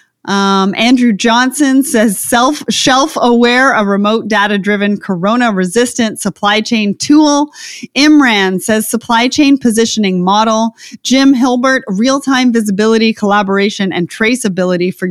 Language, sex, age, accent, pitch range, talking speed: English, female, 30-49, American, 195-255 Hz, 125 wpm